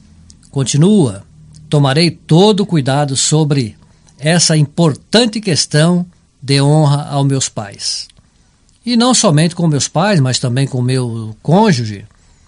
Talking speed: 115 wpm